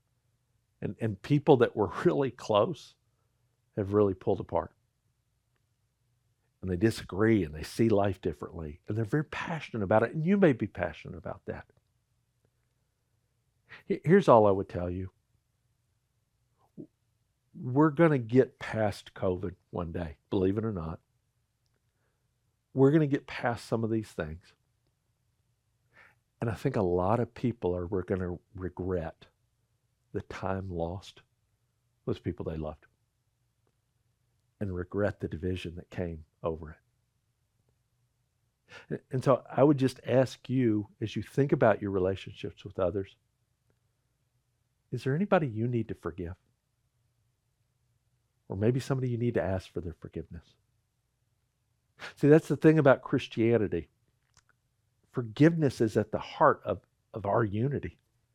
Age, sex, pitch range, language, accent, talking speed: 60-79, male, 105-125 Hz, English, American, 135 wpm